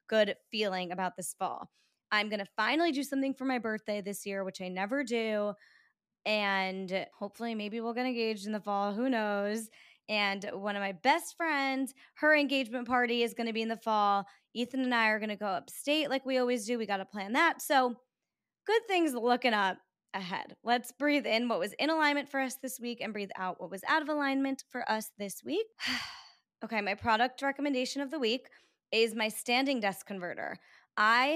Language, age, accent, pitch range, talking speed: English, 20-39, American, 200-255 Hz, 205 wpm